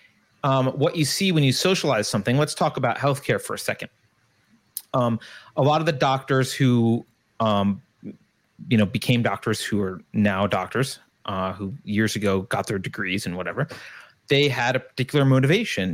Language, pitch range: English, 105-155 Hz